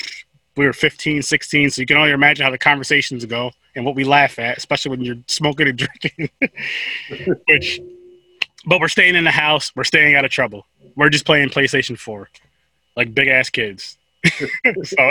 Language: English